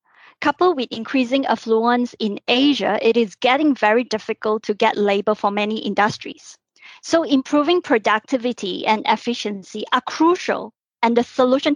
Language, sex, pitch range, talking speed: English, female, 220-285 Hz, 140 wpm